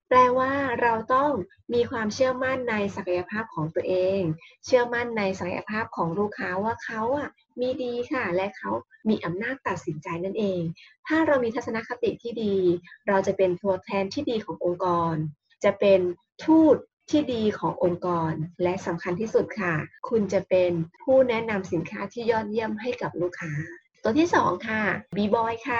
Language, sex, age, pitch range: Thai, female, 20-39, 180-250 Hz